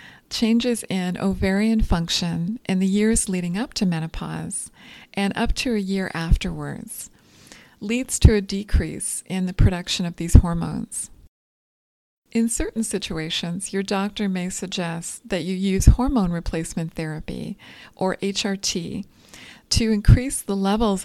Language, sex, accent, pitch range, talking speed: English, female, American, 175-215 Hz, 130 wpm